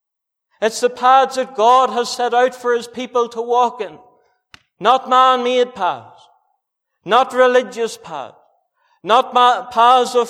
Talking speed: 140 wpm